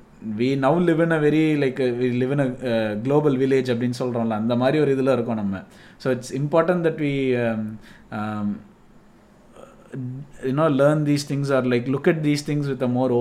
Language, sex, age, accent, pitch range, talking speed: Tamil, male, 20-39, native, 120-150 Hz, 210 wpm